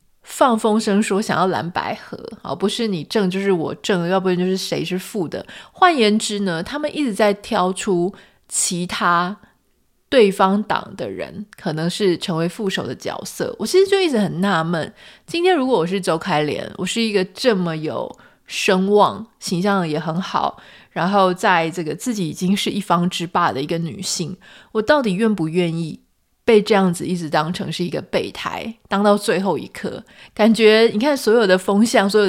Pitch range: 175-220 Hz